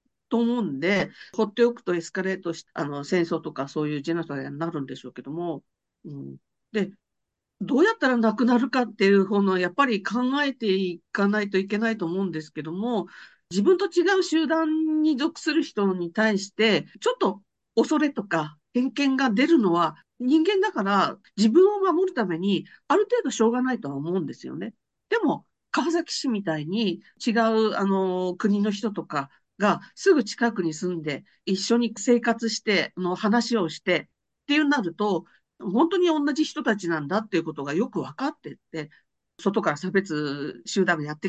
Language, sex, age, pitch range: Japanese, female, 50-69, 170-235 Hz